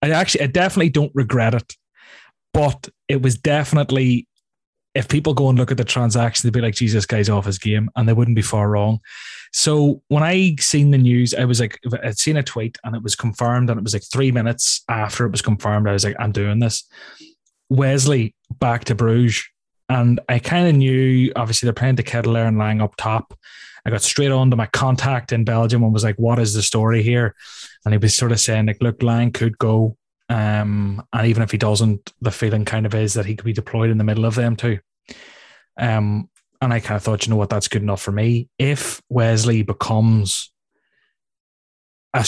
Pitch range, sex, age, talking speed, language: 110-125 Hz, male, 20-39, 215 wpm, English